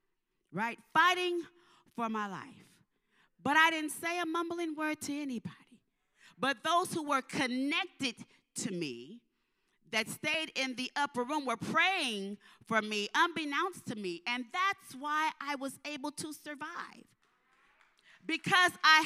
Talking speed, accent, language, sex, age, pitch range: 140 wpm, American, English, female, 40-59, 255-345 Hz